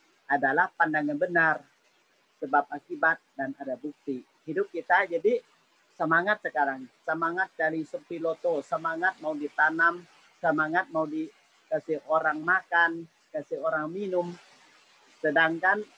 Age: 40-59